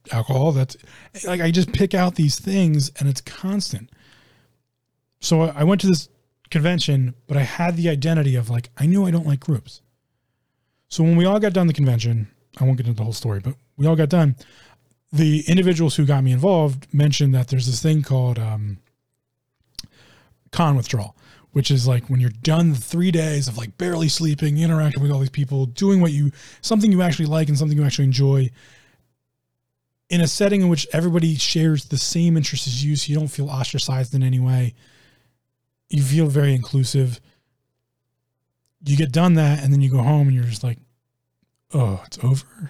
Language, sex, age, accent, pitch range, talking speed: English, male, 20-39, American, 125-160 Hz, 190 wpm